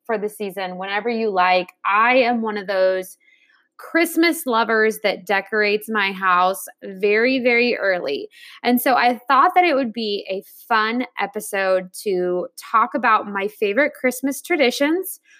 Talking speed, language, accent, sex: 150 wpm, English, American, female